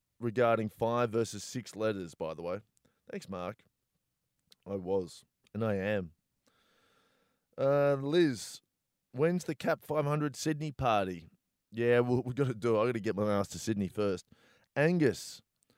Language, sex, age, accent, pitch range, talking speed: English, male, 20-39, Australian, 105-130 Hz, 145 wpm